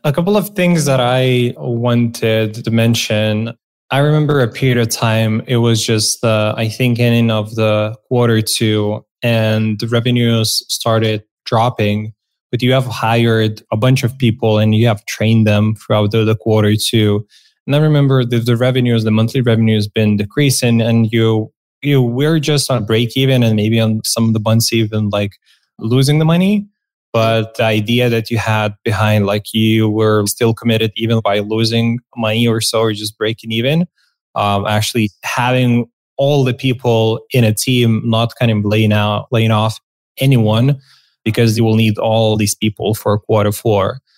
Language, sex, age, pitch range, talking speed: English, male, 20-39, 110-125 Hz, 180 wpm